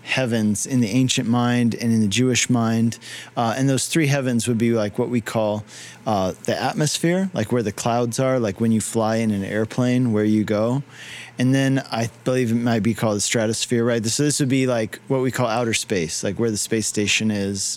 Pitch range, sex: 110-130 Hz, male